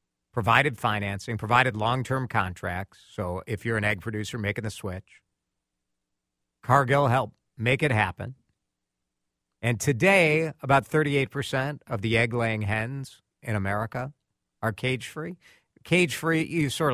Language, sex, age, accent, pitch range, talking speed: English, male, 50-69, American, 95-150 Hz, 120 wpm